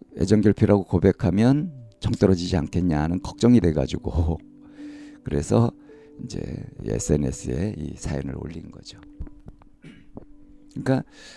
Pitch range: 85-130 Hz